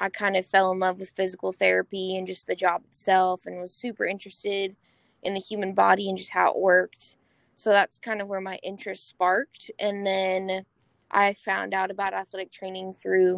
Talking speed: 195 wpm